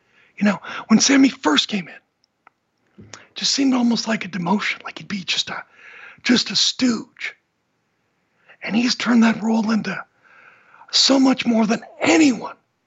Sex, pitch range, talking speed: male, 205-255 Hz, 155 wpm